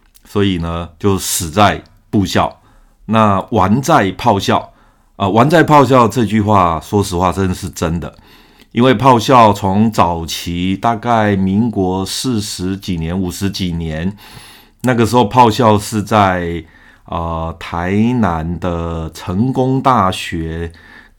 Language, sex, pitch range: Chinese, male, 90-110 Hz